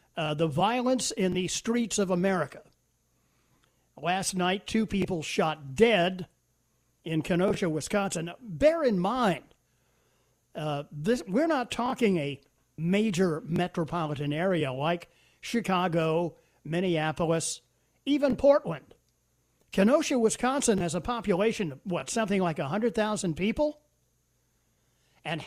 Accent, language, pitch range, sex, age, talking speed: American, English, 155-225 Hz, male, 50-69, 105 wpm